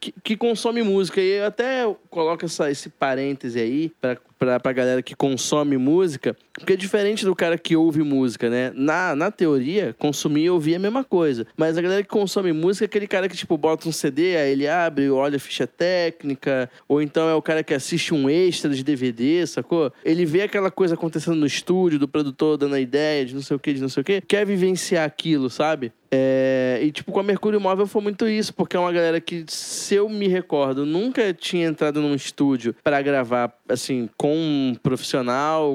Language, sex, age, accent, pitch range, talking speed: Portuguese, male, 20-39, Brazilian, 140-180 Hz, 210 wpm